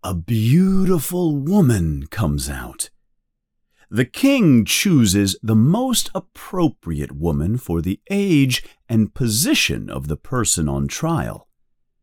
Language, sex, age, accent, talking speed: English, male, 40-59, American, 110 wpm